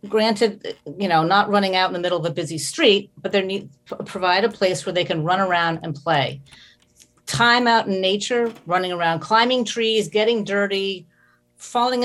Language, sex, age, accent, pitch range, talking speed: English, female, 40-59, American, 155-200 Hz, 190 wpm